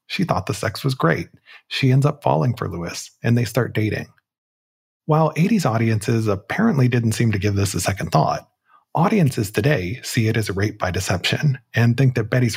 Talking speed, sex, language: 195 wpm, male, English